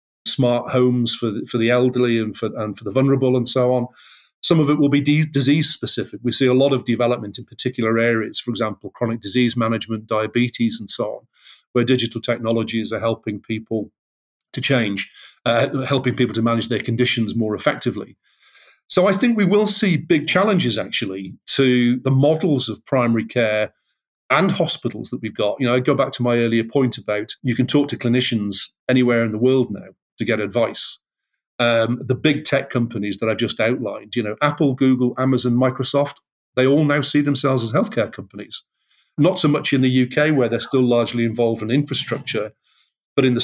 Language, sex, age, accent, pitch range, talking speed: English, male, 40-59, British, 115-140 Hz, 195 wpm